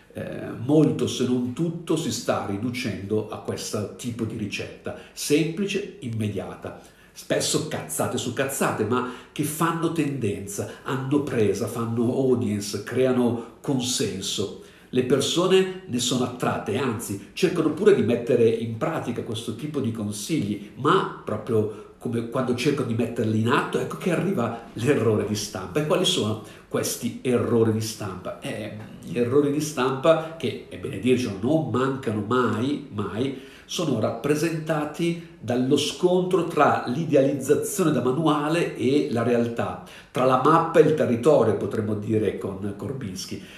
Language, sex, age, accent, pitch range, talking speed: Italian, male, 50-69, native, 115-150 Hz, 140 wpm